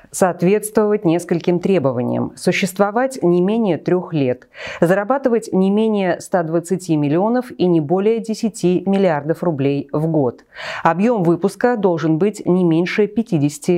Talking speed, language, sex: 120 wpm, Russian, female